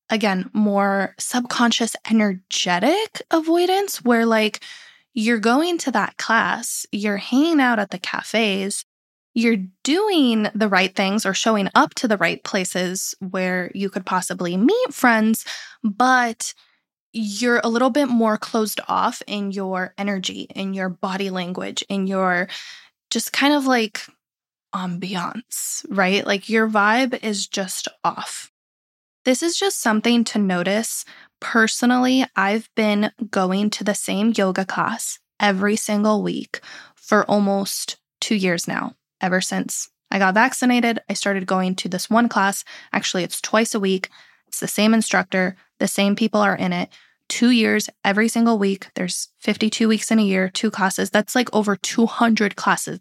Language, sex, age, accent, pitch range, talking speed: English, female, 20-39, American, 195-235 Hz, 150 wpm